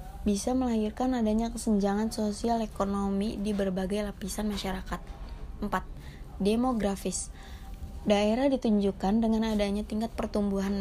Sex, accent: female, native